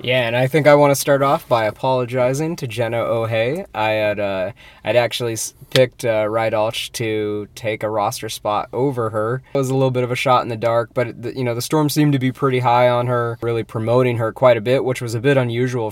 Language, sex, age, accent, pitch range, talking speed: English, male, 20-39, American, 110-125 Hz, 240 wpm